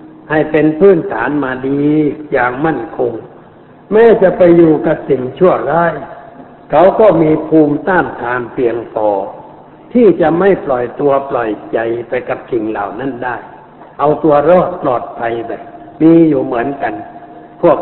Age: 60-79